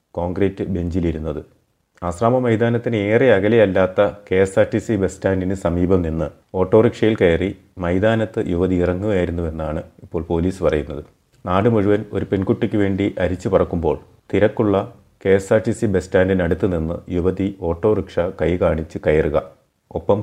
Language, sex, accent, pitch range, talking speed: Malayalam, male, native, 90-110 Hz, 135 wpm